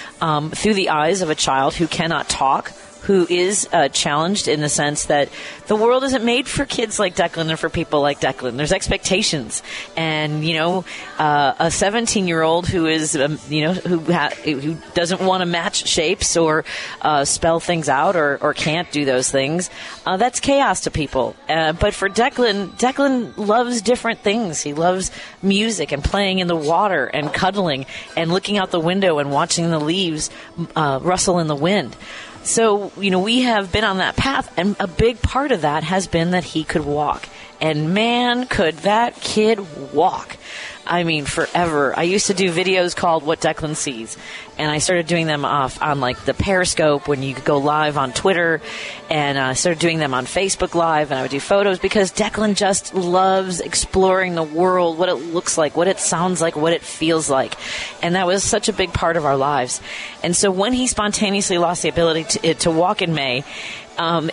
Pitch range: 155-200 Hz